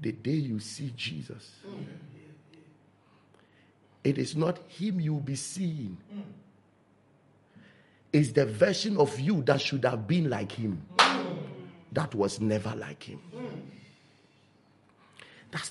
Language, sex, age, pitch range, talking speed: English, male, 50-69, 120-175 Hz, 110 wpm